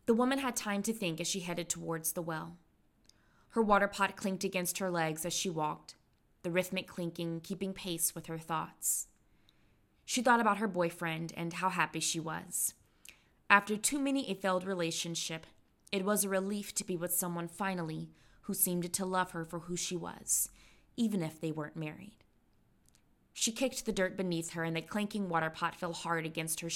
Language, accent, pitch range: English, American, 165-200 Hz